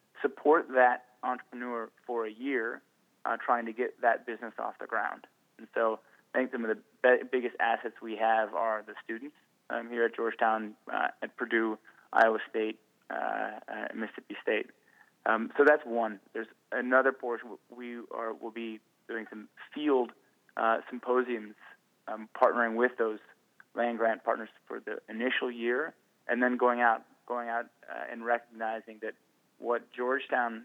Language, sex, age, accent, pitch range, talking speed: English, male, 20-39, American, 110-125 Hz, 160 wpm